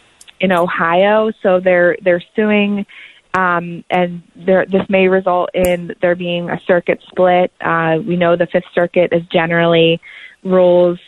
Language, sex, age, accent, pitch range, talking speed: English, female, 20-39, American, 170-190 Hz, 140 wpm